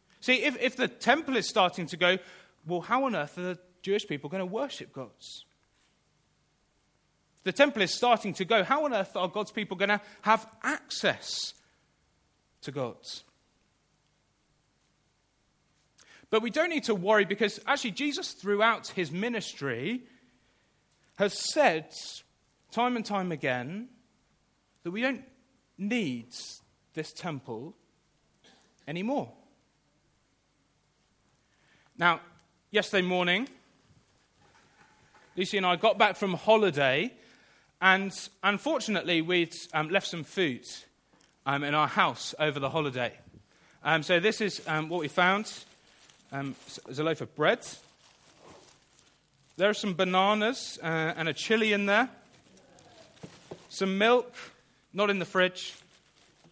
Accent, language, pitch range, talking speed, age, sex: British, English, 160-220 Hz, 125 wpm, 30-49, male